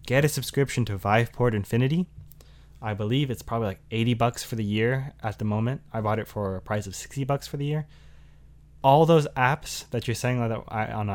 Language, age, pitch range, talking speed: English, 20-39, 105-135 Hz, 205 wpm